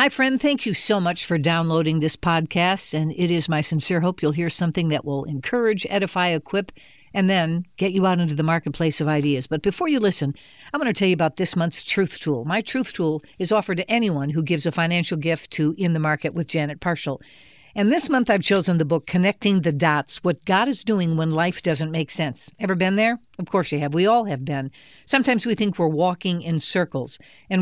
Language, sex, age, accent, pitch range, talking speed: English, female, 60-79, American, 155-200 Hz, 230 wpm